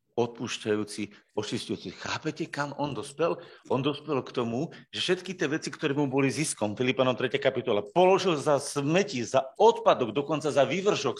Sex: male